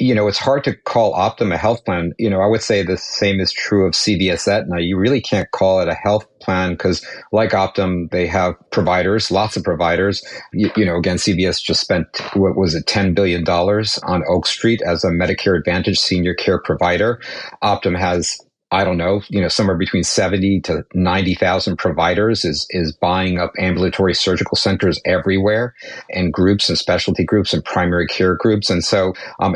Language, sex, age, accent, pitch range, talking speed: English, male, 50-69, American, 90-105 Hz, 190 wpm